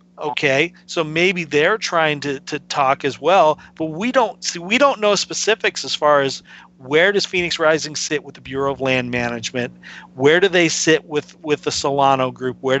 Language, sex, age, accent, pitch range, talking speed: English, male, 40-59, American, 130-165 Hz, 195 wpm